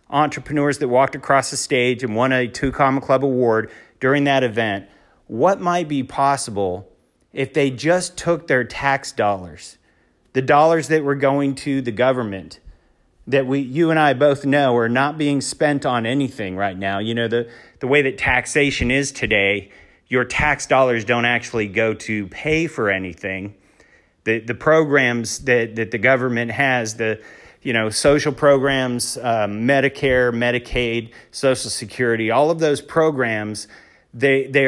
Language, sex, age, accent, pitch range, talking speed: English, male, 40-59, American, 115-145 Hz, 155 wpm